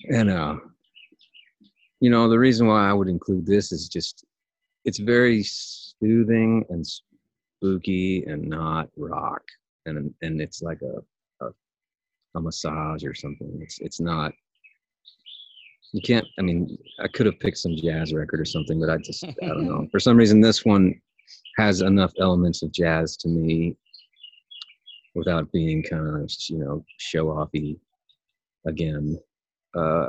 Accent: American